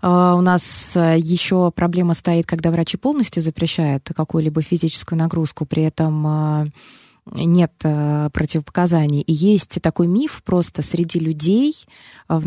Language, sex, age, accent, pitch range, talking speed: Russian, female, 20-39, native, 160-195 Hz, 115 wpm